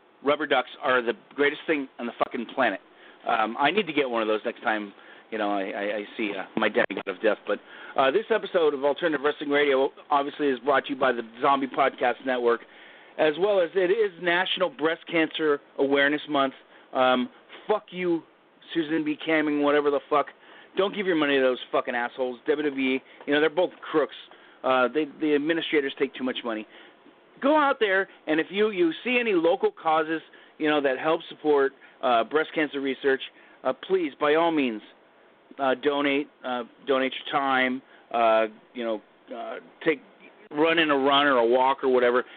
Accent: American